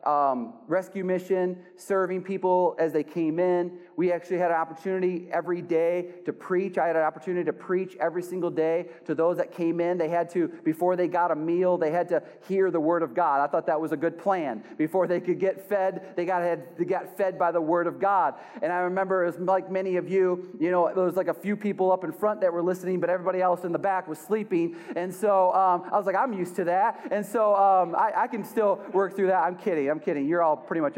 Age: 30-49